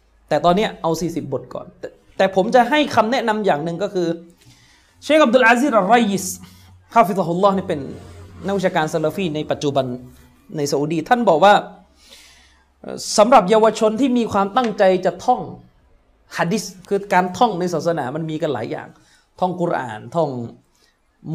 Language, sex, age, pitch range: Thai, male, 20-39, 155-210 Hz